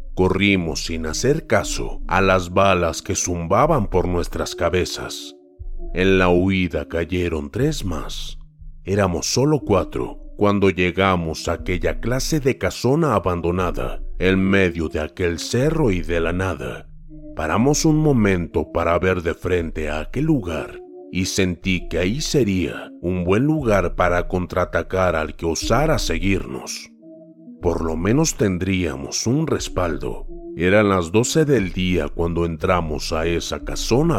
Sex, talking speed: male, 135 wpm